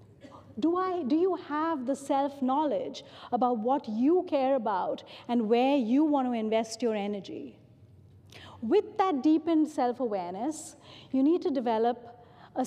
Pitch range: 220-290 Hz